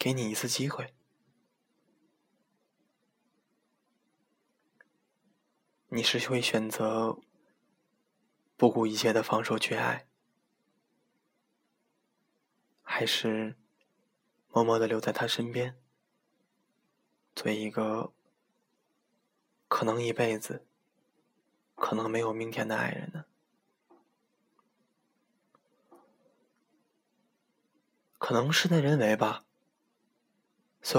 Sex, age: male, 20-39